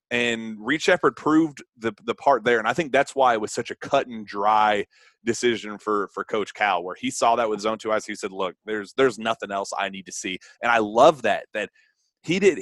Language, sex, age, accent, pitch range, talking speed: English, male, 30-49, American, 110-140 Hz, 240 wpm